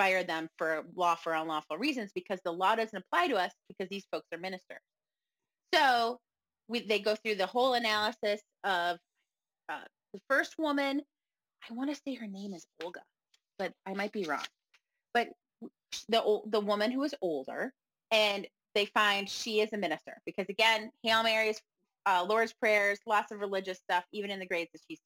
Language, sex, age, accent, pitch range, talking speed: English, female, 30-49, American, 185-225 Hz, 180 wpm